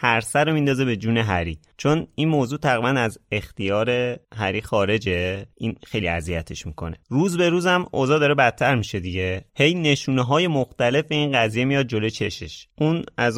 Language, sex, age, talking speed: Persian, male, 30-49, 175 wpm